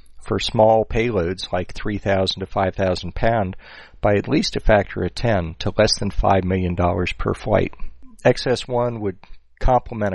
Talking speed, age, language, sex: 150 wpm, 40-59, English, male